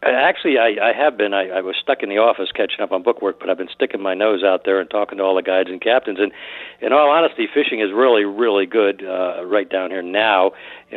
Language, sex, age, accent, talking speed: English, male, 60-79, American, 265 wpm